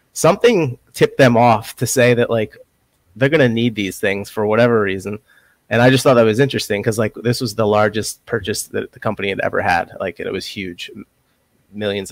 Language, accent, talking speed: English, American, 205 wpm